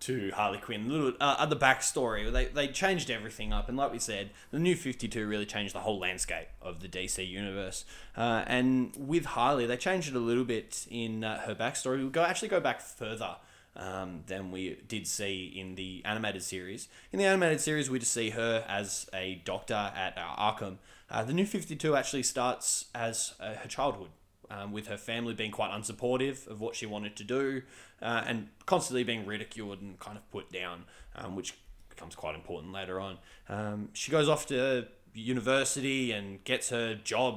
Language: English